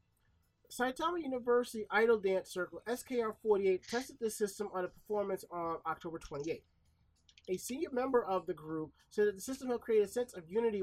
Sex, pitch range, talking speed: male, 175-235 Hz, 170 wpm